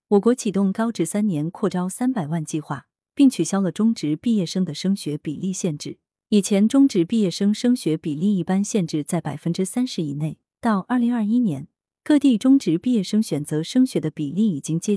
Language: Chinese